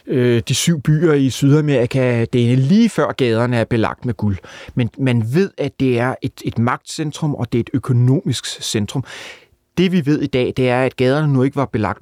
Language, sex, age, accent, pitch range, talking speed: Danish, male, 30-49, native, 115-140 Hz, 210 wpm